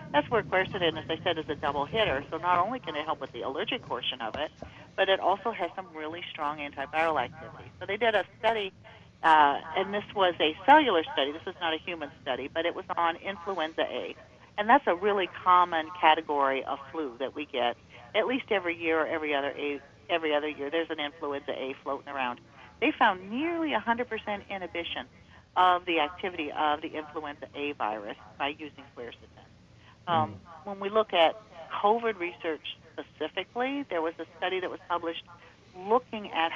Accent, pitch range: American, 150-190 Hz